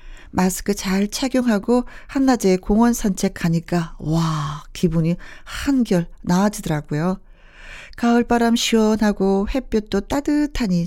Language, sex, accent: Korean, female, native